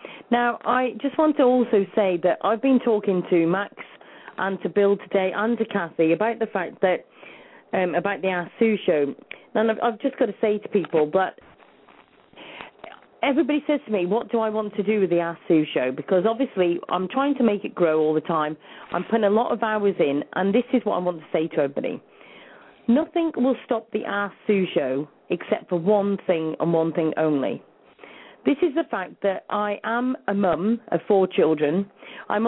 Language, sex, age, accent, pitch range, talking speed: English, female, 40-59, British, 180-235 Hz, 205 wpm